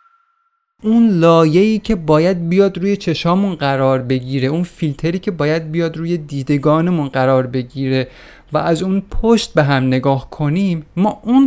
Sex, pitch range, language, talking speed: male, 140-180 Hz, Persian, 145 wpm